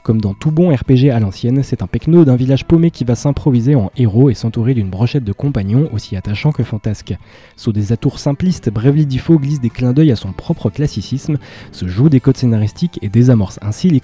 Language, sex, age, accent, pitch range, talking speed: French, male, 20-39, French, 110-140 Hz, 220 wpm